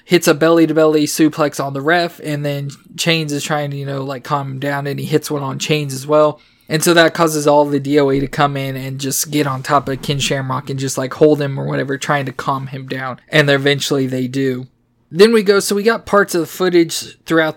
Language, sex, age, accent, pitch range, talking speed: English, male, 20-39, American, 135-155 Hz, 255 wpm